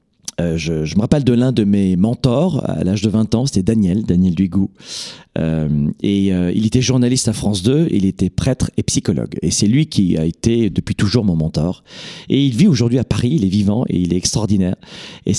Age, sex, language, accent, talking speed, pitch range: 40-59, male, French, French, 220 wpm, 105-155 Hz